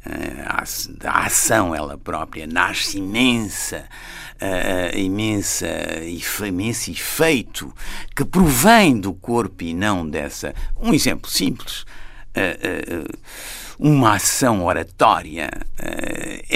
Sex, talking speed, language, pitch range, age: male, 95 wpm, Portuguese, 100-140 Hz, 60-79